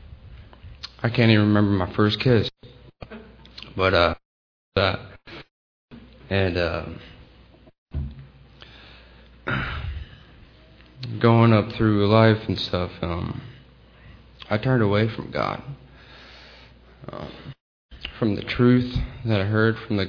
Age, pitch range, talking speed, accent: 20-39, 80-110 Hz, 100 wpm, American